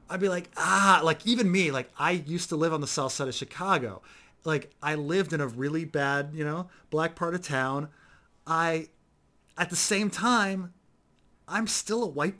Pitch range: 145-200 Hz